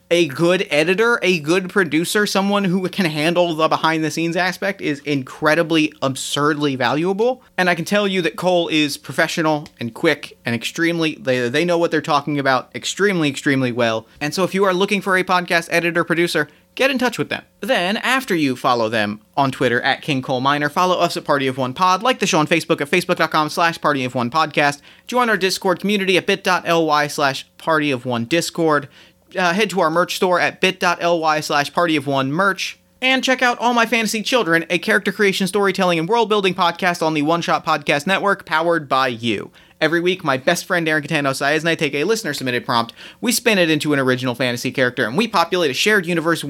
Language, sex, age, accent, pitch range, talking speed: English, male, 30-49, American, 145-185 Hz, 210 wpm